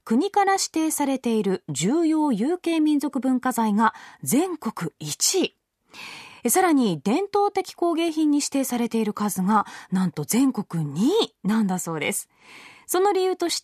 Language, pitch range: Japanese, 220-330 Hz